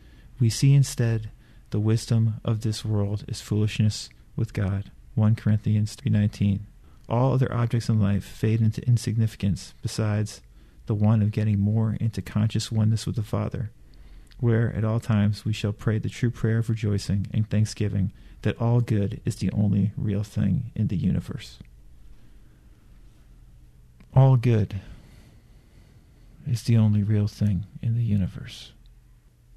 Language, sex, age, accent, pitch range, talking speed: English, male, 40-59, American, 100-115 Hz, 140 wpm